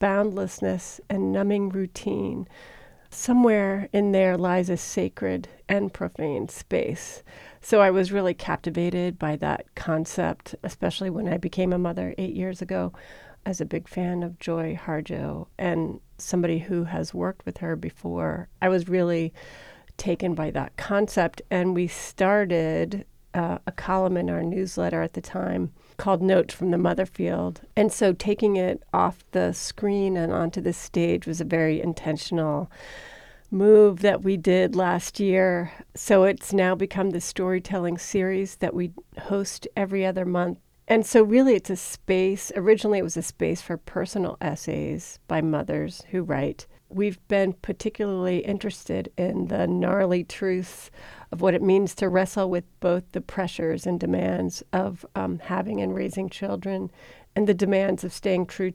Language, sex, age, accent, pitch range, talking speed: English, female, 40-59, American, 165-195 Hz, 155 wpm